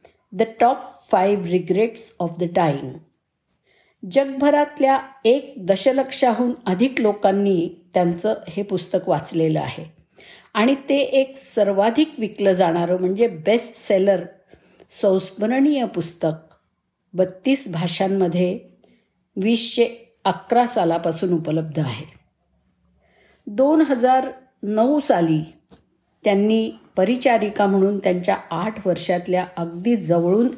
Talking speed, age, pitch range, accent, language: 80 wpm, 50-69, 170-225 Hz, native, Marathi